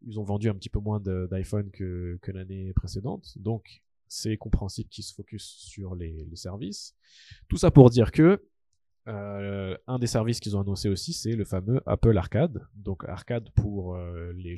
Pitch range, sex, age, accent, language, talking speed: 95-115 Hz, male, 20-39, French, French, 185 wpm